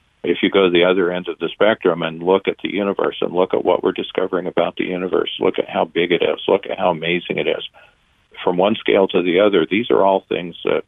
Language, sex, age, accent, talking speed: English, male, 50-69, American, 260 wpm